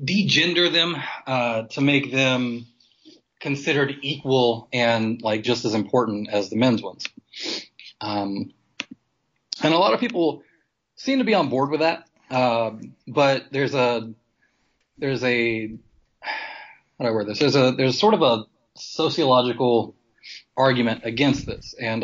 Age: 30-49